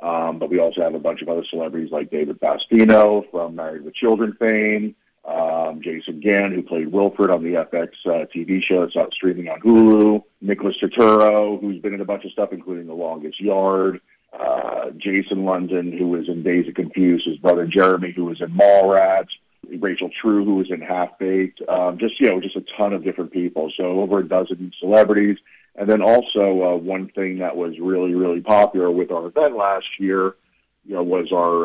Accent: American